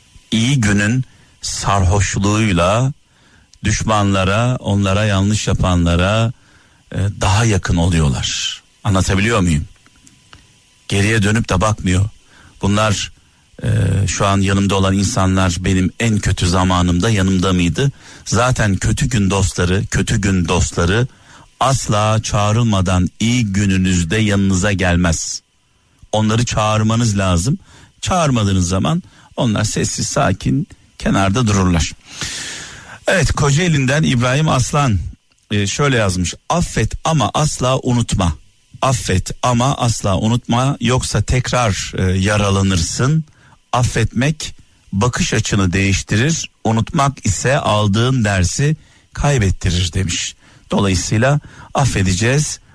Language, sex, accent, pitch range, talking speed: Turkish, male, native, 95-125 Hz, 90 wpm